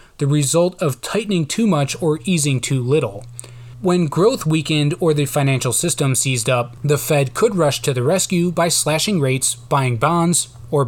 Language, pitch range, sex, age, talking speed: English, 125-165 Hz, male, 20-39, 175 wpm